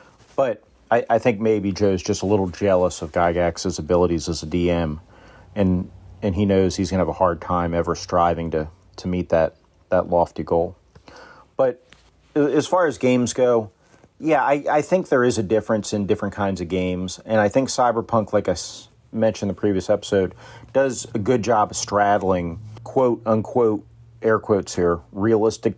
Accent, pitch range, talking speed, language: American, 90-110 Hz, 180 wpm, English